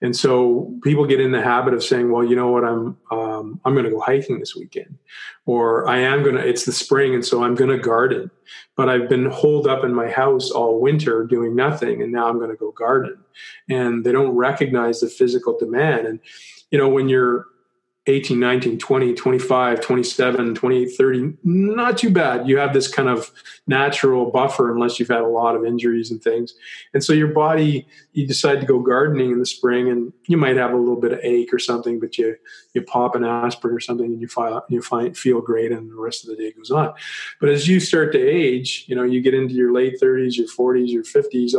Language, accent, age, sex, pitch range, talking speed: English, American, 40-59, male, 120-140 Hz, 225 wpm